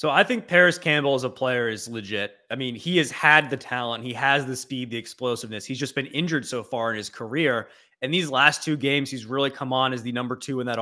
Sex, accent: male, American